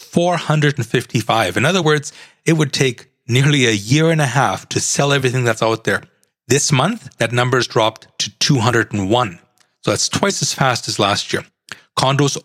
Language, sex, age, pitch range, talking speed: English, male, 40-59, 115-150 Hz, 175 wpm